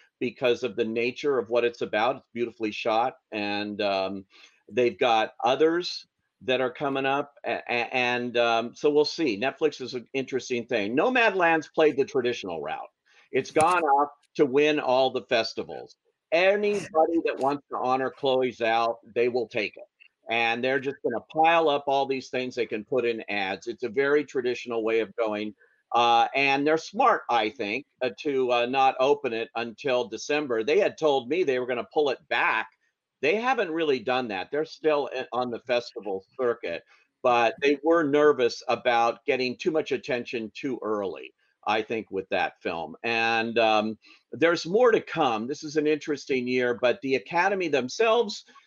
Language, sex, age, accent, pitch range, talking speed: English, male, 50-69, American, 115-155 Hz, 180 wpm